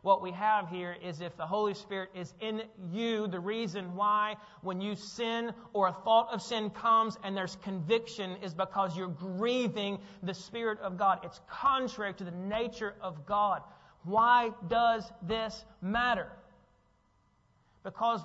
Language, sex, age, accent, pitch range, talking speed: English, male, 40-59, American, 195-235 Hz, 155 wpm